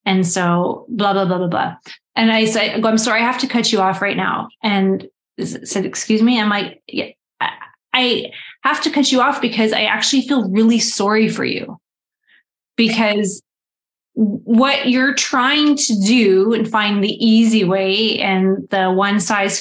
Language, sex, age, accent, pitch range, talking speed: English, female, 20-39, American, 200-250 Hz, 175 wpm